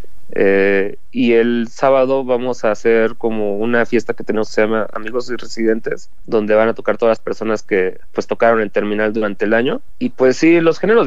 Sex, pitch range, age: male, 110-125 Hz, 30-49